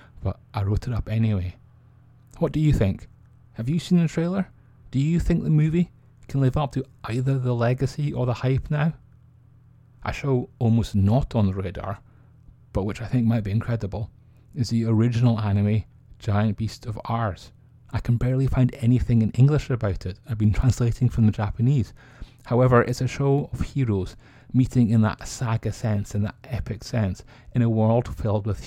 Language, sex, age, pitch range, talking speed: English, male, 30-49, 110-130 Hz, 185 wpm